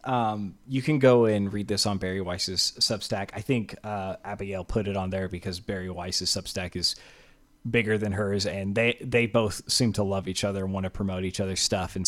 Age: 30-49